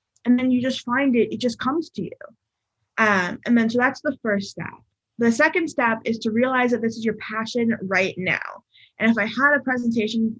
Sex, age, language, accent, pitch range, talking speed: female, 20-39, English, American, 200-255 Hz, 220 wpm